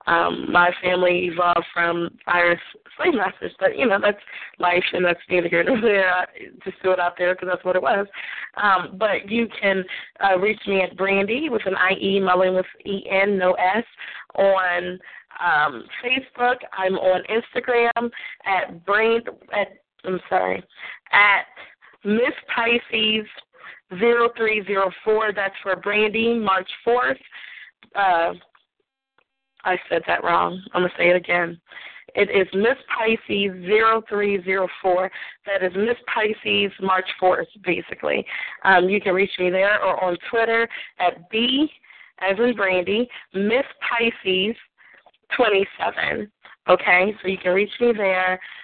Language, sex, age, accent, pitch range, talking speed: English, female, 20-39, American, 185-225 Hz, 140 wpm